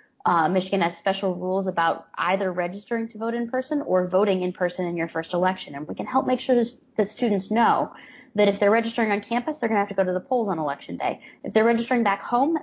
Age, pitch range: 20-39, 175-235 Hz